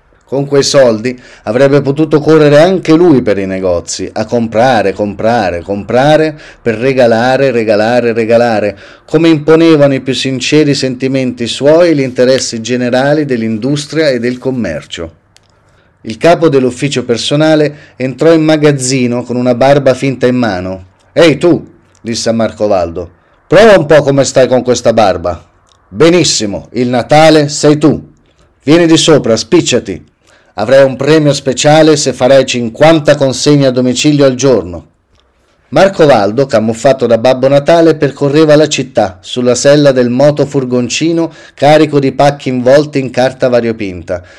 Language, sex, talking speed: Italian, male, 140 wpm